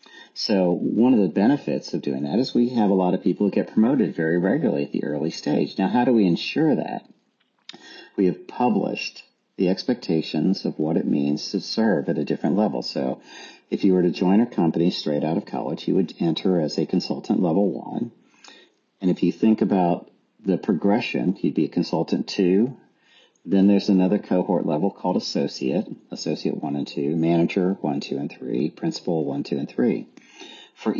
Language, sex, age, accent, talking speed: English, male, 50-69, American, 190 wpm